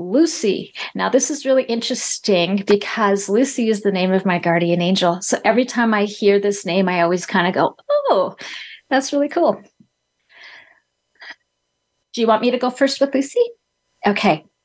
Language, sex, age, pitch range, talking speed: English, female, 40-59, 195-245 Hz, 170 wpm